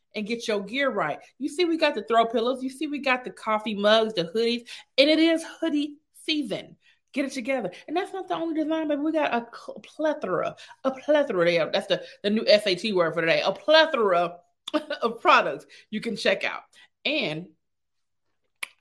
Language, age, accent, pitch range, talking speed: English, 30-49, American, 190-290 Hz, 190 wpm